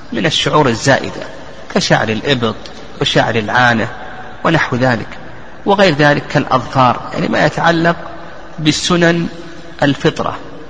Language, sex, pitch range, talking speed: Arabic, male, 125-165 Hz, 95 wpm